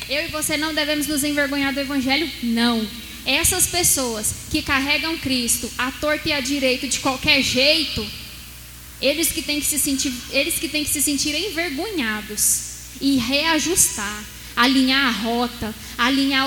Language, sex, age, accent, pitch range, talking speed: Portuguese, female, 10-29, Brazilian, 240-305 Hz, 140 wpm